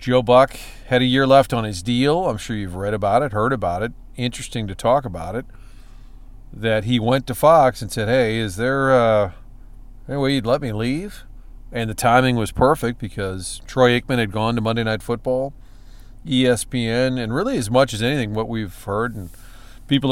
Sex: male